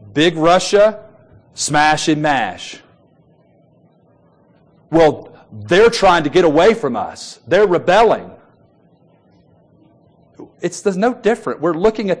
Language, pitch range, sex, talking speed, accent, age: English, 150-205 Hz, male, 110 wpm, American, 40-59